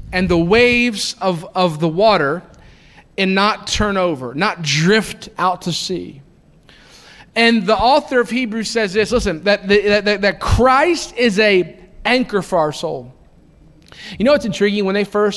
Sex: male